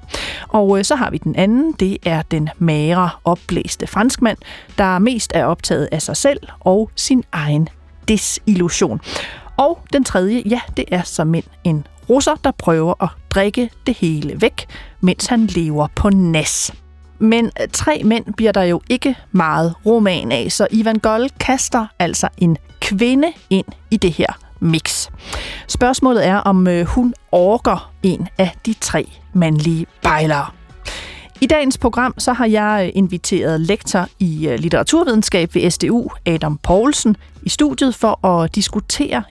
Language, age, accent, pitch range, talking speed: Danish, 40-59, native, 170-230 Hz, 145 wpm